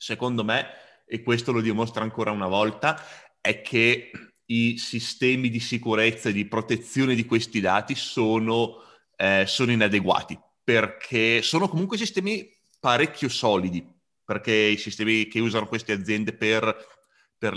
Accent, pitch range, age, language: native, 110-125 Hz, 30-49, Italian